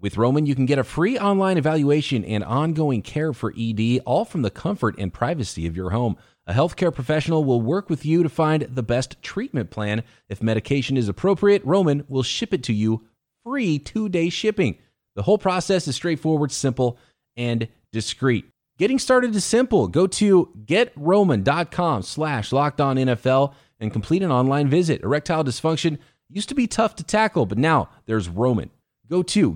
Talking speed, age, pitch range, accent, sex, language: 175 wpm, 30-49, 115-165 Hz, American, male, English